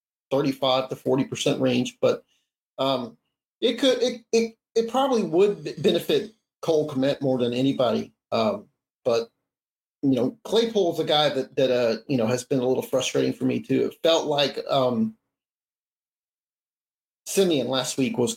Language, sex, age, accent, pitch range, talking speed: English, male, 40-59, American, 130-170 Hz, 155 wpm